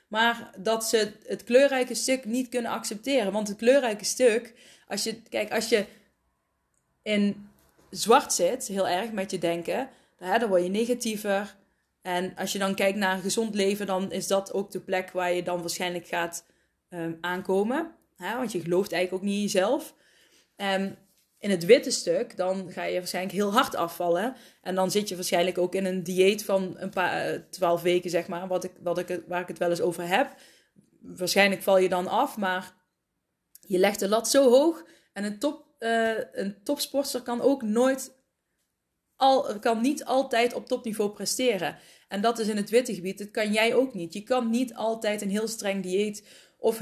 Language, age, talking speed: Dutch, 20-39, 190 wpm